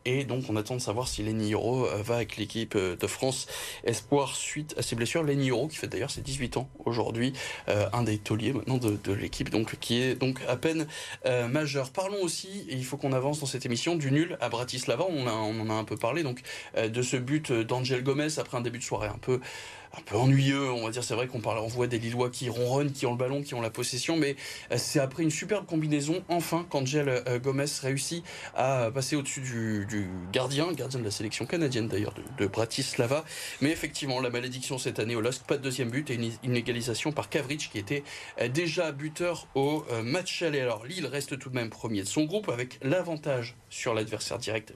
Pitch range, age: 120-150 Hz, 20-39